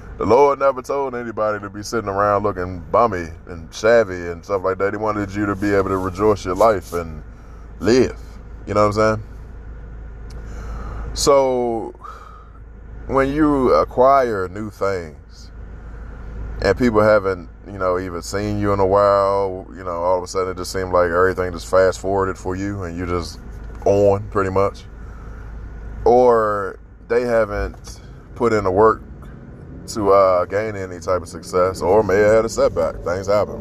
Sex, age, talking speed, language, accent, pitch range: male, 20-39, 170 wpm, English, American, 90-110 Hz